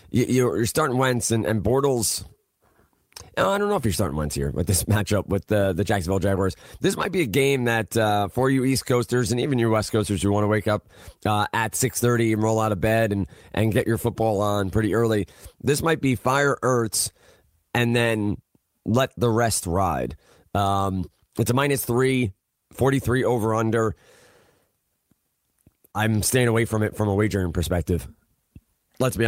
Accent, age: American, 30-49